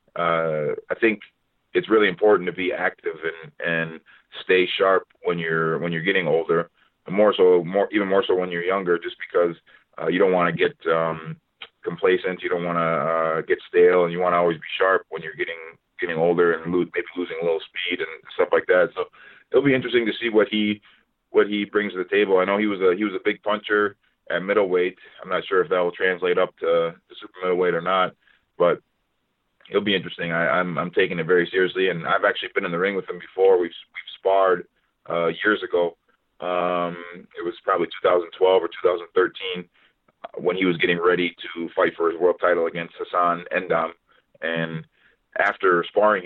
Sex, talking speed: male, 205 wpm